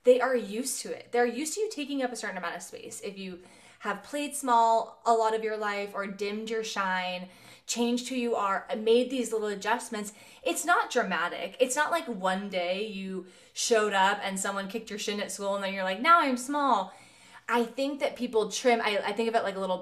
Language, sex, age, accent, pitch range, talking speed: English, female, 20-39, American, 195-245 Hz, 230 wpm